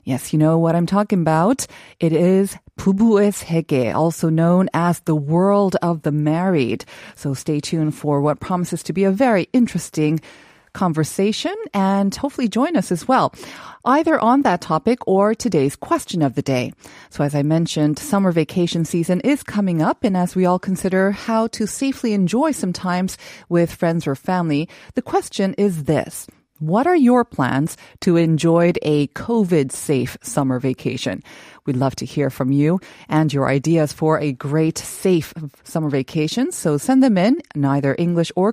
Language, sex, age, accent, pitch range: Korean, female, 30-49, American, 150-200 Hz